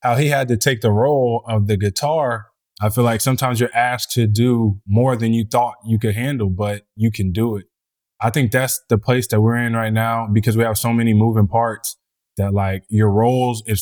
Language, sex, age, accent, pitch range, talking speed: English, male, 20-39, American, 105-120 Hz, 225 wpm